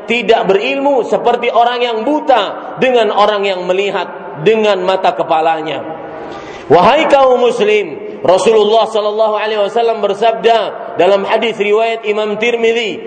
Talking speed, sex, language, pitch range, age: 120 wpm, male, English, 205-255 Hz, 40-59